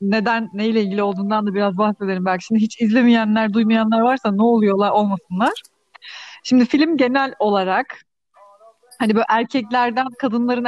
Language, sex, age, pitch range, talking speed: Turkish, female, 40-59, 205-255 Hz, 135 wpm